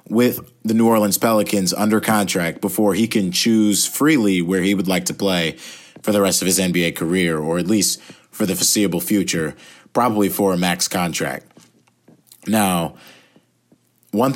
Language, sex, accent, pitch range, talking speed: English, male, American, 90-110 Hz, 165 wpm